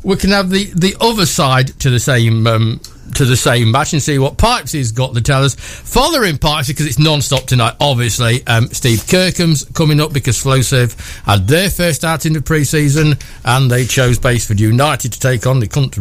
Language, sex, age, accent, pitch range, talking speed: English, male, 60-79, British, 120-175 Hz, 205 wpm